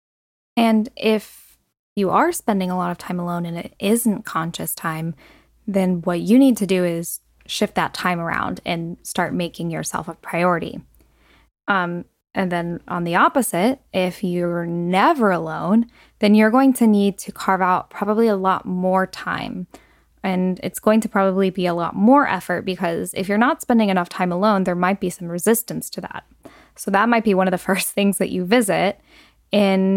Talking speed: 185 wpm